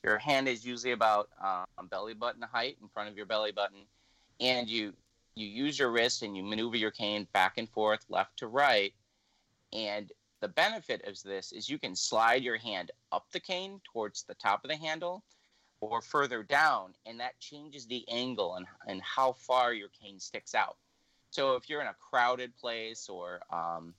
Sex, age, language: male, 30-49, English